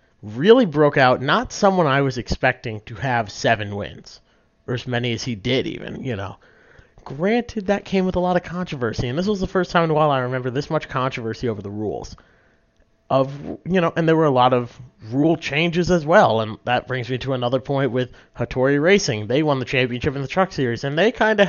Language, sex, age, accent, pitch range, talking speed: English, male, 30-49, American, 120-155 Hz, 225 wpm